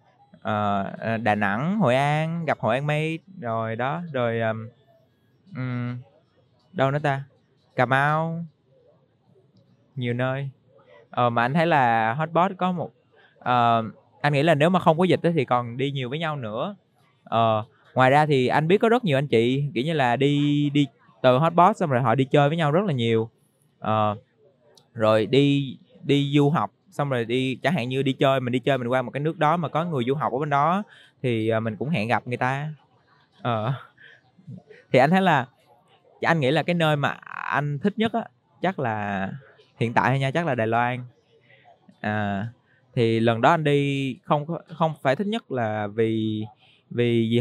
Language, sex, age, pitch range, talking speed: Vietnamese, male, 20-39, 120-155 Hz, 190 wpm